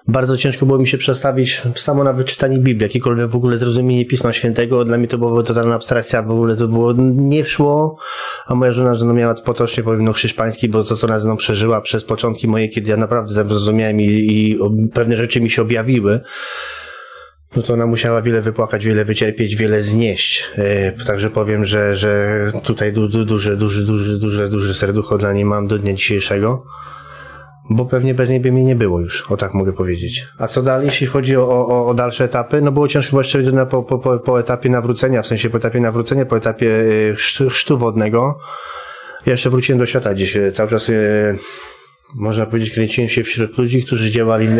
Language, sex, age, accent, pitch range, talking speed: Polish, male, 20-39, native, 110-125 Hz, 195 wpm